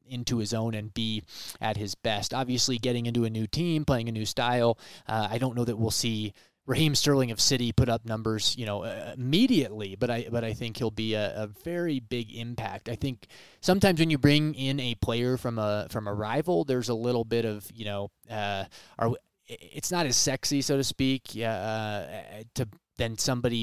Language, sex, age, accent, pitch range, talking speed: English, male, 20-39, American, 110-135 Hz, 210 wpm